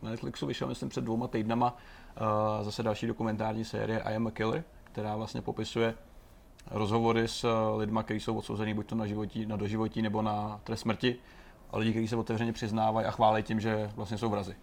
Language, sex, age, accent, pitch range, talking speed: Czech, male, 30-49, native, 105-125 Hz, 200 wpm